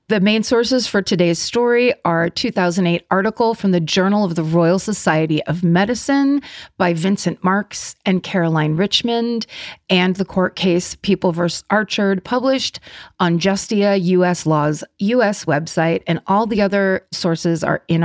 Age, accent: 40-59, American